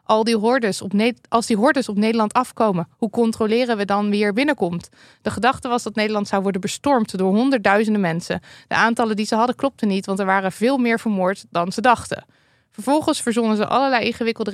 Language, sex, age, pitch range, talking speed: Dutch, female, 20-39, 190-240 Hz, 200 wpm